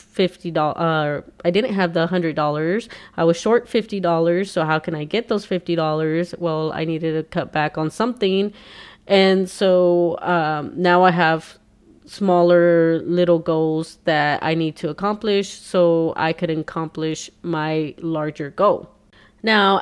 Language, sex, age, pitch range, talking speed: English, female, 30-49, 160-195 Hz, 145 wpm